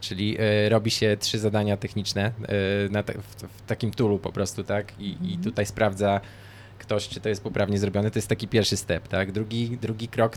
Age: 20-39